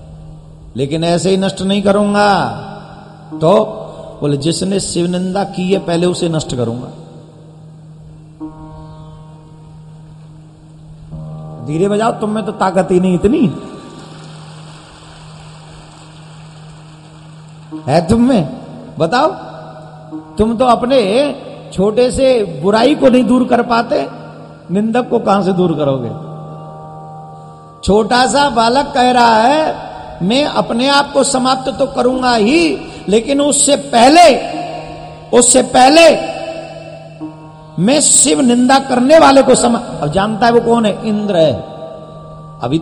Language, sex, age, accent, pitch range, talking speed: Gujarati, male, 50-69, native, 155-235 Hz, 110 wpm